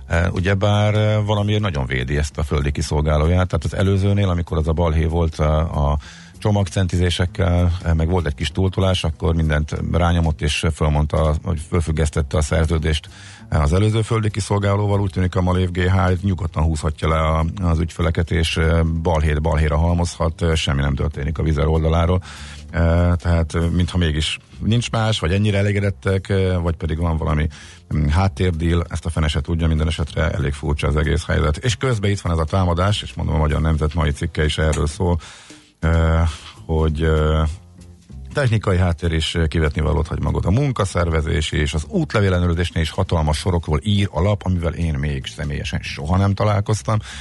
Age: 50-69